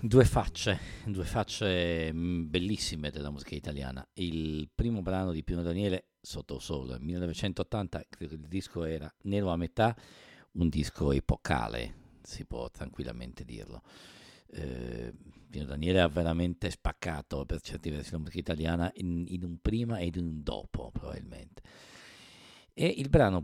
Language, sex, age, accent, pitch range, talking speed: English, male, 50-69, Italian, 80-105 Hz, 145 wpm